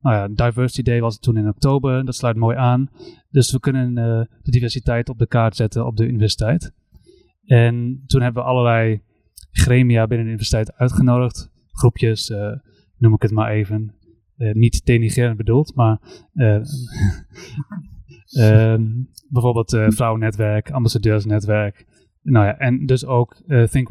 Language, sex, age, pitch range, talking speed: Dutch, male, 30-49, 110-125 Hz, 155 wpm